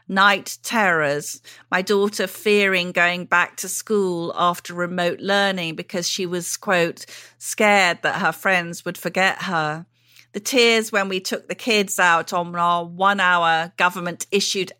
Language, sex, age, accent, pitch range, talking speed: English, female, 40-59, British, 175-205 Hz, 140 wpm